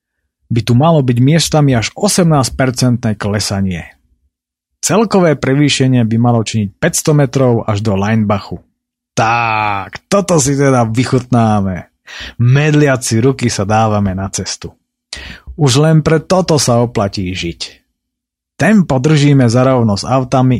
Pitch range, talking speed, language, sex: 100-140 Hz, 120 wpm, Slovak, male